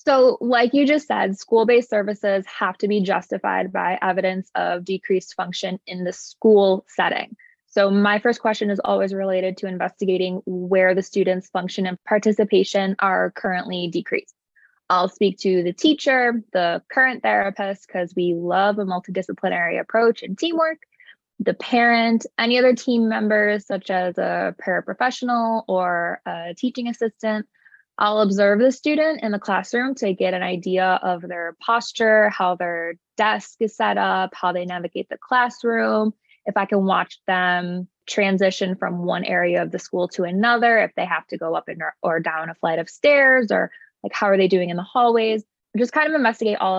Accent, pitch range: American, 180-225 Hz